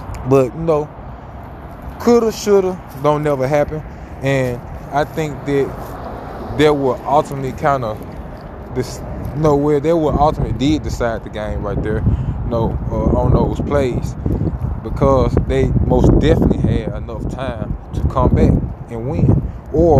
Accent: American